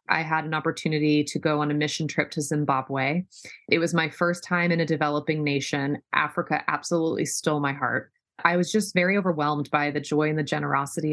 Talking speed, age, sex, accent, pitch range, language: 200 wpm, 20-39, female, American, 150-175 Hz, English